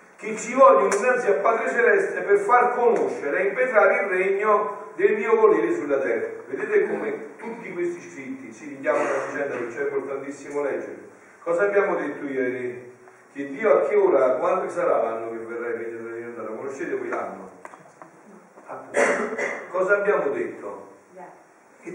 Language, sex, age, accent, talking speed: Italian, male, 40-59, native, 165 wpm